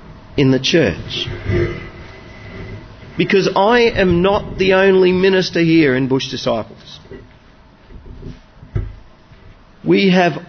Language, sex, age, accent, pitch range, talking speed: English, male, 50-69, Australian, 115-170 Hz, 90 wpm